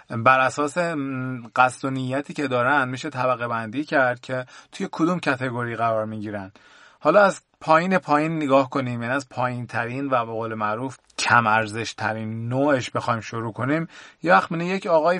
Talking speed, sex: 160 wpm, male